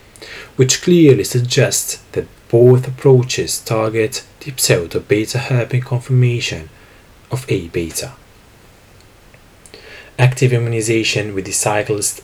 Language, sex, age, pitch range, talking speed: English, male, 30-49, 100-125 Hz, 100 wpm